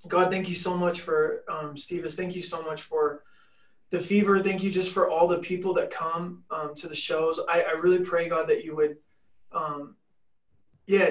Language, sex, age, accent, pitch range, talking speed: English, male, 20-39, American, 150-180 Hz, 205 wpm